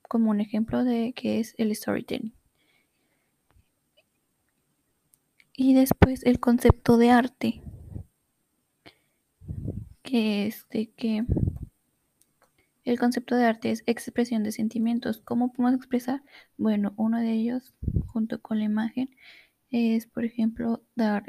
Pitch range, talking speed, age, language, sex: 225-250 Hz, 115 wpm, 10-29, Spanish, female